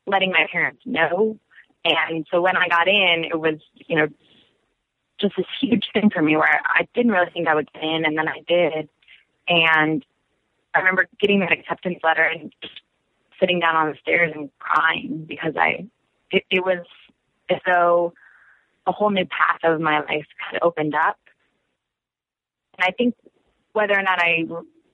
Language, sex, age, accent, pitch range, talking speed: English, female, 20-39, American, 160-185 Hz, 180 wpm